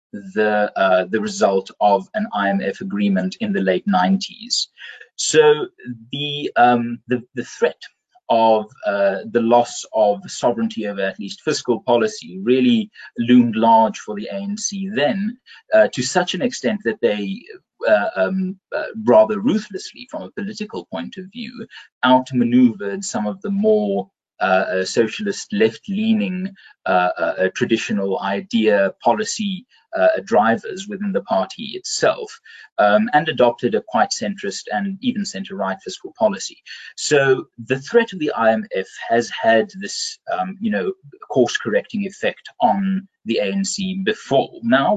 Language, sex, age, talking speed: English, male, 30-49, 140 wpm